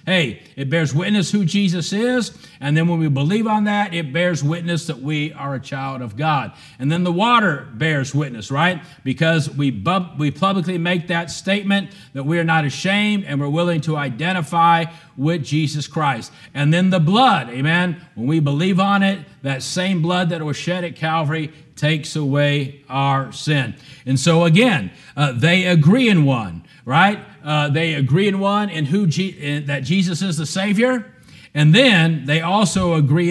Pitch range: 140-175 Hz